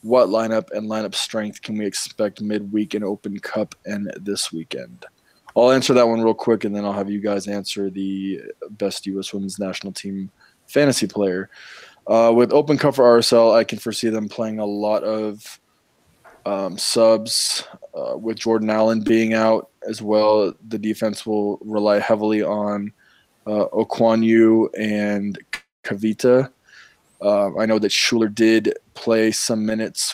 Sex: male